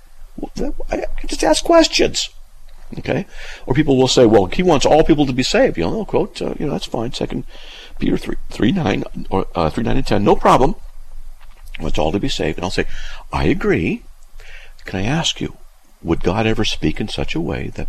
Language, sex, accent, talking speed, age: English, male, American, 215 wpm, 50-69